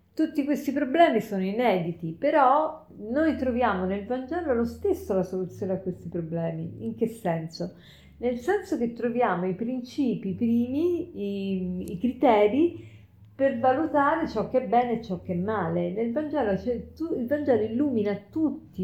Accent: native